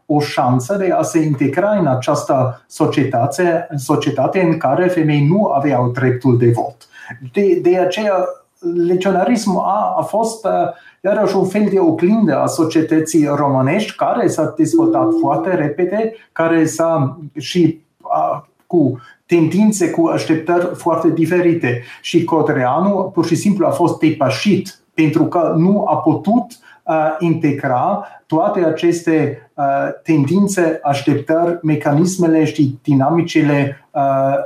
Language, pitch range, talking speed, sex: Romanian, 145-180 Hz, 115 wpm, male